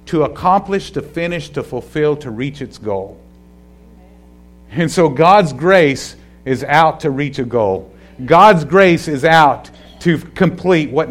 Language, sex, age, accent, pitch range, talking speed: English, male, 50-69, American, 135-180 Hz, 145 wpm